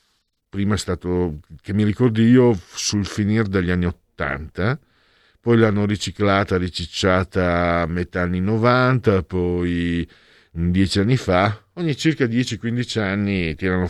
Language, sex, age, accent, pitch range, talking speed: Italian, male, 50-69, native, 80-115 Hz, 130 wpm